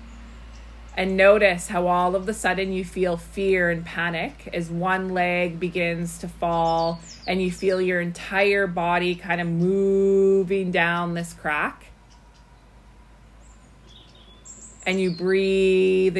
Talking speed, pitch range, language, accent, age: 120 wpm, 170-195 Hz, English, American, 30-49